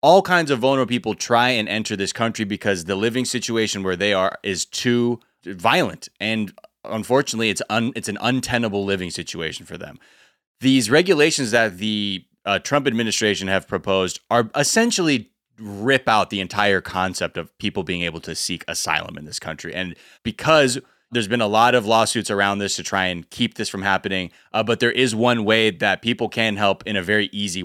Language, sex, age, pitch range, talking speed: English, male, 20-39, 100-125 Hz, 190 wpm